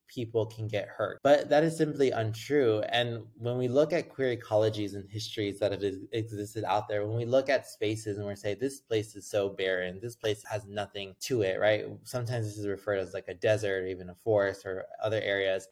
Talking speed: 220 wpm